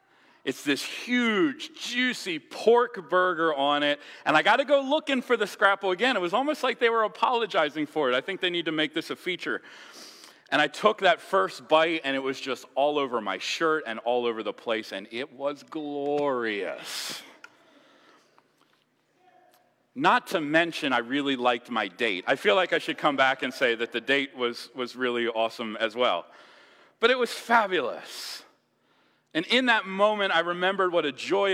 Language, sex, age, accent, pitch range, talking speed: English, male, 40-59, American, 135-220 Hz, 185 wpm